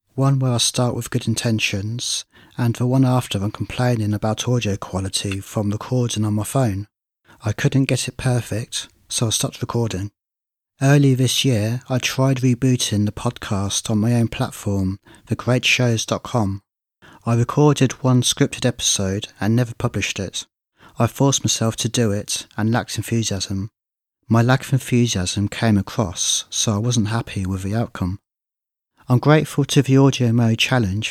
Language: English